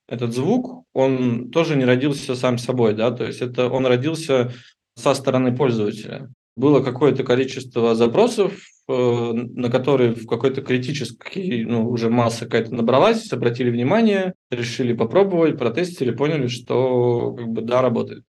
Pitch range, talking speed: 120-175 Hz, 135 wpm